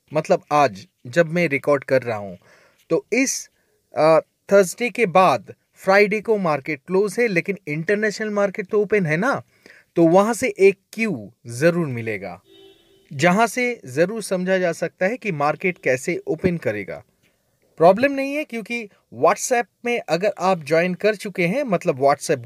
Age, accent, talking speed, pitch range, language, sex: 30-49, native, 155 wpm, 155-210 Hz, Hindi, male